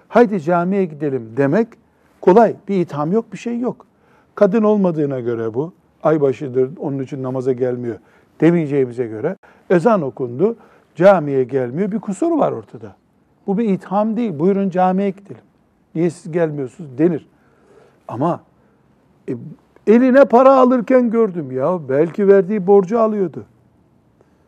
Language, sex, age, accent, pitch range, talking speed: Turkish, male, 60-79, native, 145-205 Hz, 125 wpm